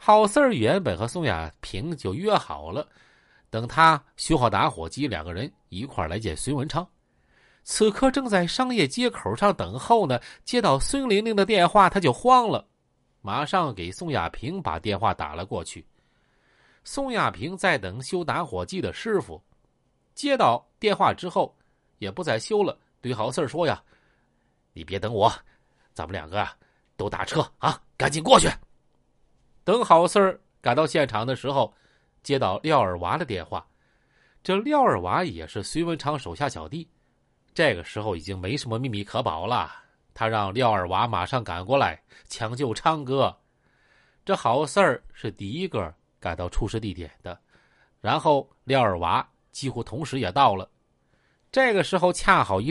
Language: Chinese